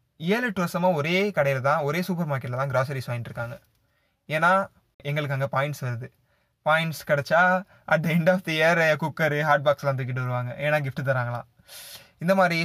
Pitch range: 130-165 Hz